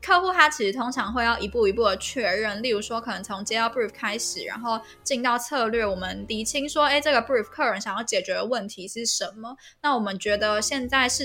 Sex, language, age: female, Chinese, 10-29